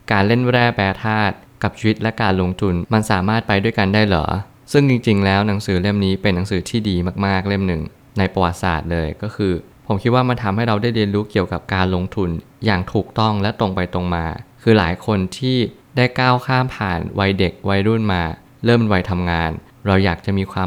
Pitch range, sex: 95-115 Hz, male